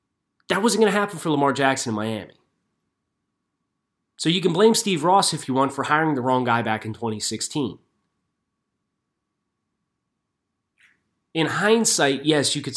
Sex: male